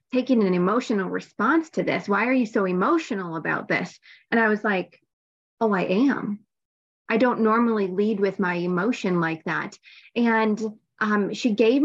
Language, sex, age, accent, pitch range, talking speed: English, female, 20-39, American, 205-245 Hz, 165 wpm